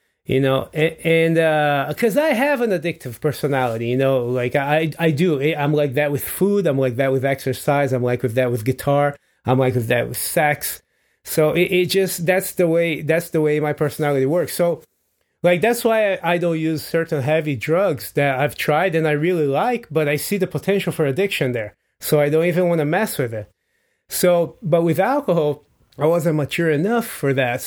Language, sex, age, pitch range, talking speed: English, male, 30-49, 140-175 Hz, 205 wpm